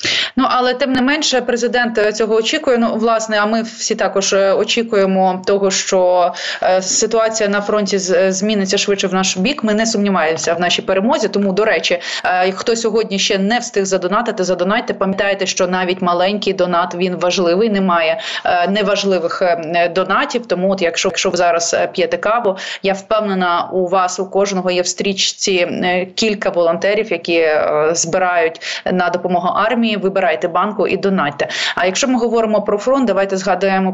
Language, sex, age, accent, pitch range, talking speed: Ukrainian, female, 20-39, native, 185-220 Hz, 150 wpm